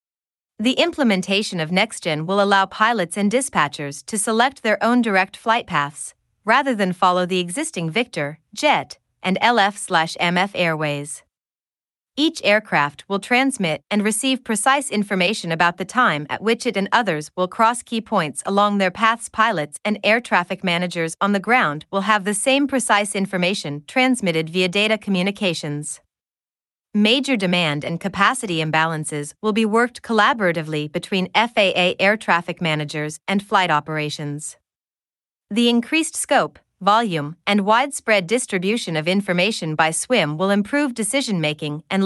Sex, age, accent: female, 30-49, American